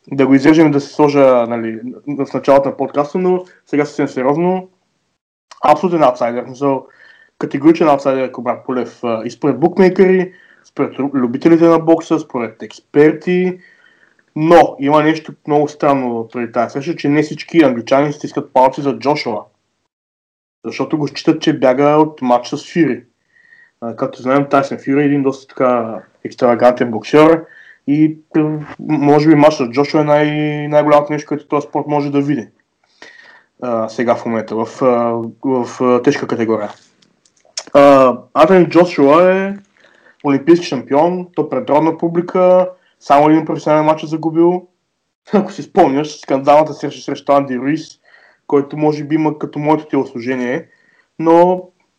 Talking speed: 140 wpm